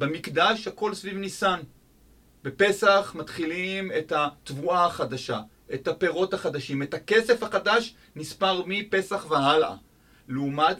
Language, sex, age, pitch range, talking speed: Hebrew, male, 30-49, 135-200 Hz, 105 wpm